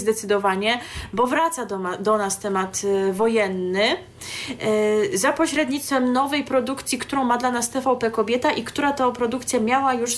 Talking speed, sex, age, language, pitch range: 140 wpm, female, 20-39, Polish, 195-250 Hz